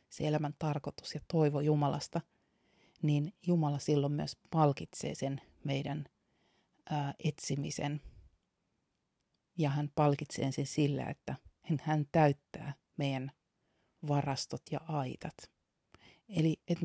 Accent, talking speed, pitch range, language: native, 105 wpm, 135-160 Hz, Finnish